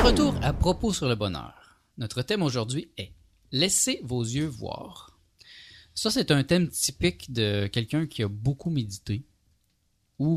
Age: 30-49